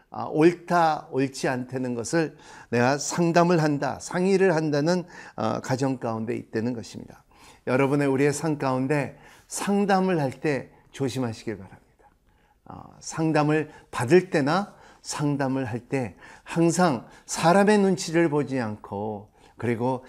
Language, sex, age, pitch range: Korean, male, 50-69, 115-155 Hz